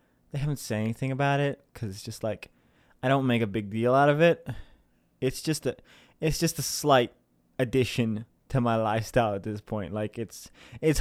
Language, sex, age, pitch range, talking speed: English, male, 20-39, 105-165 Hz, 195 wpm